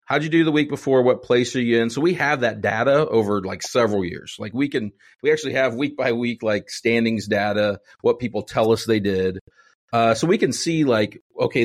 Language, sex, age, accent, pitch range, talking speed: English, male, 40-59, American, 115-155 Hz, 230 wpm